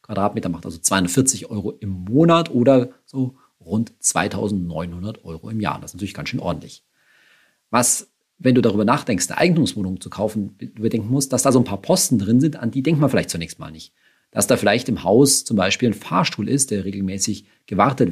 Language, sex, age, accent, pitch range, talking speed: German, male, 40-59, German, 95-125 Hz, 200 wpm